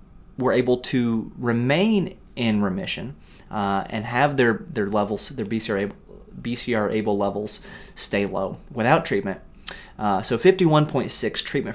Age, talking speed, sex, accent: 30-49, 130 wpm, male, American